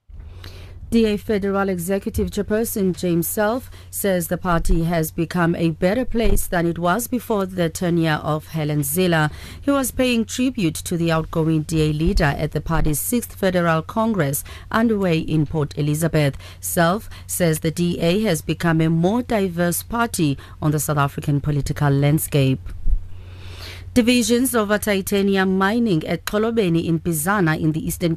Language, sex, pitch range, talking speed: English, female, 155-195 Hz, 150 wpm